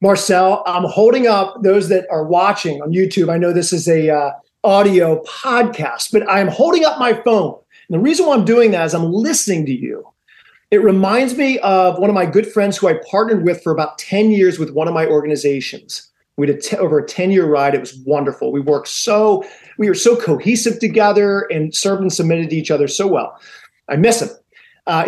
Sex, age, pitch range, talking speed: male, 40-59, 175-225 Hz, 215 wpm